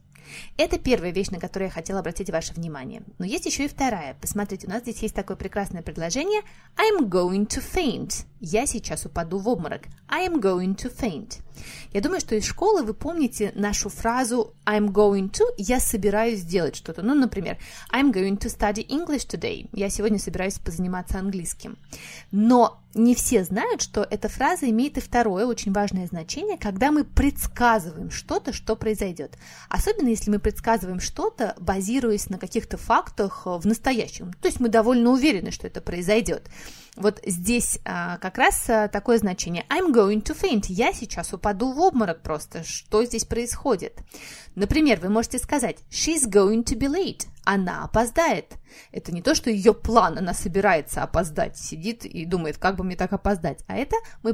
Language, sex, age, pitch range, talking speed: Russian, female, 20-39, 195-245 Hz, 170 wpm